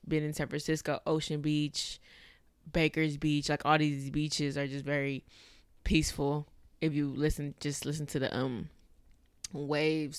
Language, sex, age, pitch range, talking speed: English, female, 20-39, 135-155 Hz, 145 wpm